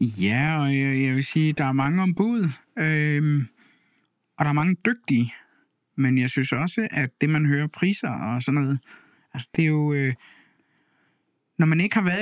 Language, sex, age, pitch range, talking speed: Danish, male, 60-79, 145-190 Hz, 190 wpm